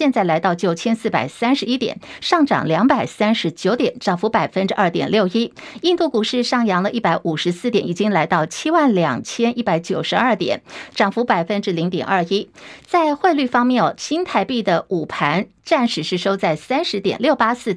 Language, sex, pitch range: Chinese, female, 180-250 Hz